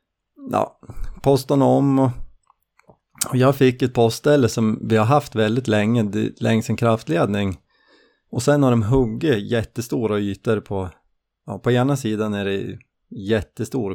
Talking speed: 135 wpm